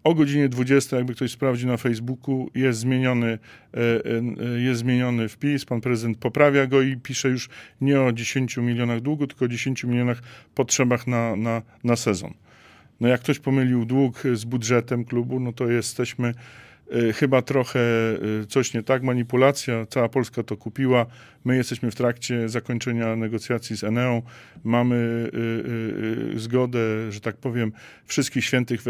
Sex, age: male, 40-59